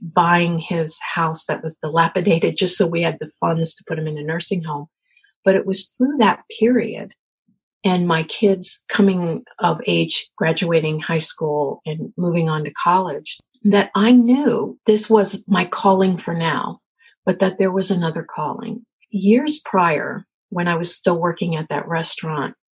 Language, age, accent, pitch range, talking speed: English, 50-69, American, 160-200 Hz, 170 wpm